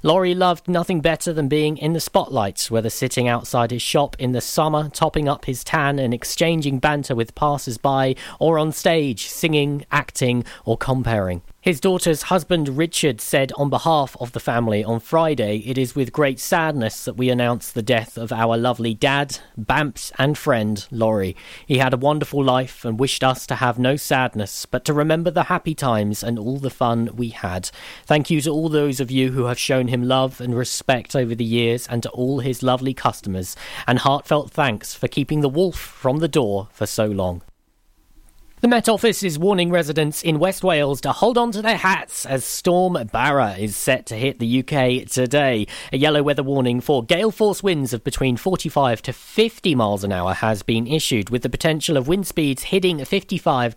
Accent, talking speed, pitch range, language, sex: British, 195 wpm, 120-155 Hz, English, male